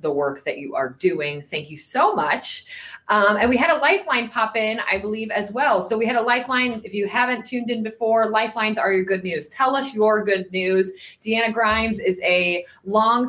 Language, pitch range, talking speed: English, 170-250 Hz, 215 wpm